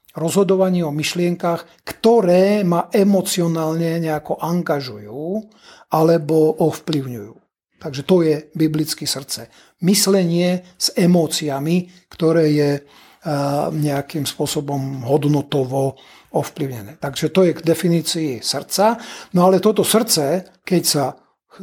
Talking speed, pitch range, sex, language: 100 wpm, 150-180 Hz, male, Slovak